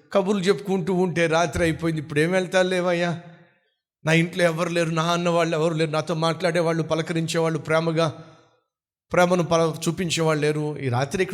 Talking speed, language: 150 wpm, Telugu